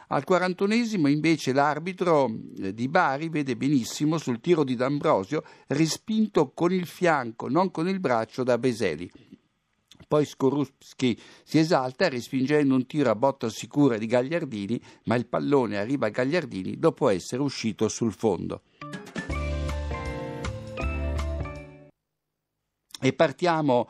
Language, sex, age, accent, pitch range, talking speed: Italian, male, 60-79, native, 125-165 Hz, 120 wpm